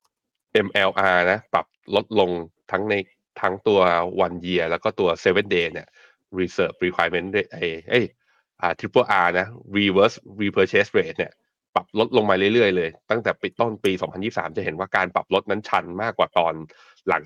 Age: 20-39